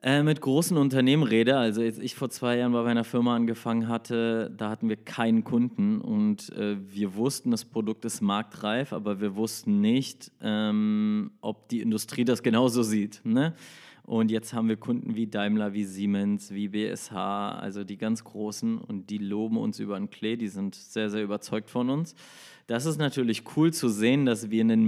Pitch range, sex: 105-140 Hz, male